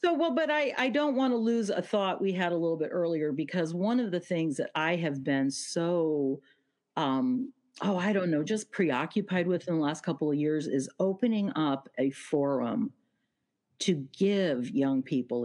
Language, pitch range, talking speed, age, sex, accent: English, 150-225 Hz, 195 wpm, 50-69, female, American